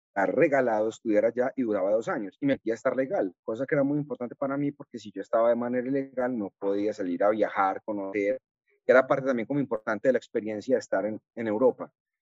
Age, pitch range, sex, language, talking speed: 30-49, 115-145 Hz, male, Spanish, 235 wpm